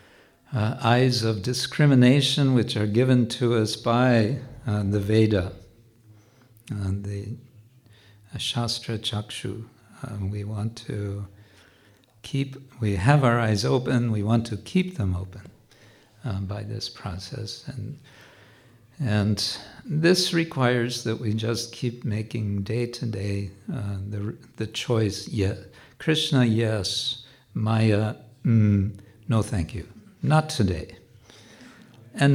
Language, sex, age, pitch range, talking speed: English, male, 60-79, 105-125 Hz, 120 wpm